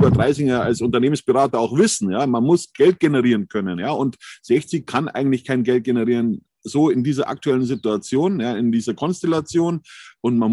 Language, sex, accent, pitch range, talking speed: German, male, German, 110-145 Hz, 170 wpm